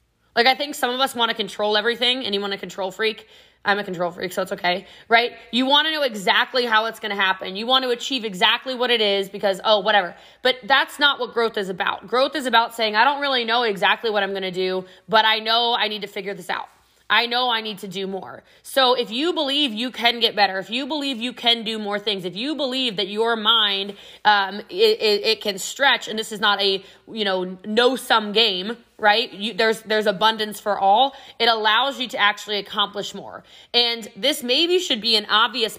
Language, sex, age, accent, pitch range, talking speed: English, female, 20-39, American, 200-255 Hz, 235 wpm